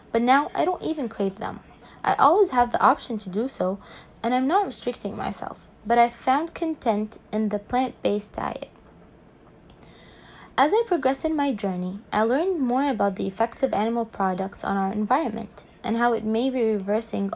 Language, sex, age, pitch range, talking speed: English, female, 20-39, 205-265 Hz, 180 wpm